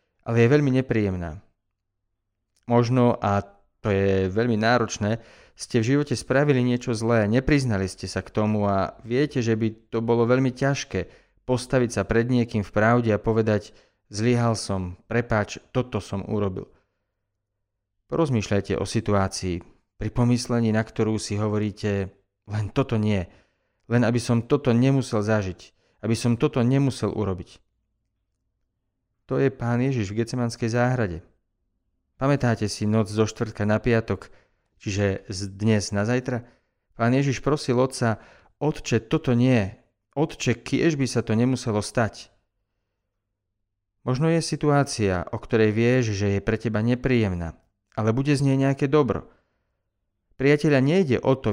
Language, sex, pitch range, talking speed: Slovak, male, 100-125 Hz, 140 wpm